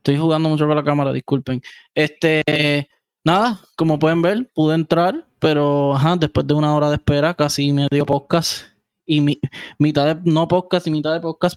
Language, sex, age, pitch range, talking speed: Spanish, male, 20-39, 145-170 Hz, 215 wpm